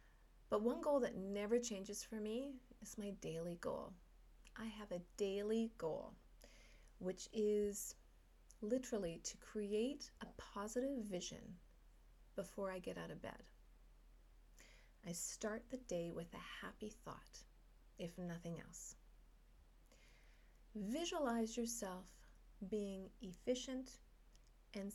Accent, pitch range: American, 190-255 Hz